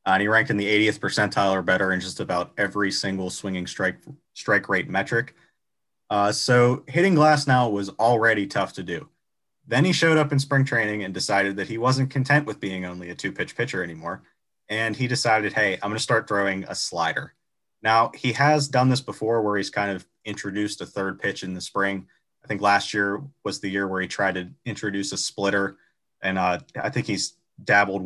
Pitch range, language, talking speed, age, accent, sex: 100-125 Hz, English, 210 wpm, 30-49, American, male